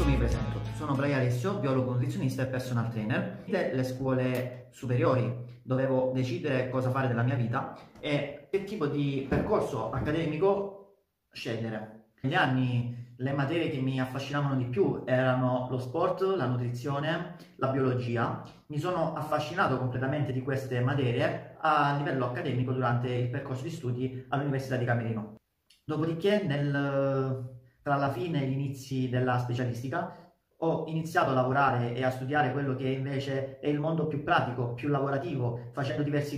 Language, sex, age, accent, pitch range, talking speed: Italian, male, 30-49, native, 130-155 Hz, 150 wpm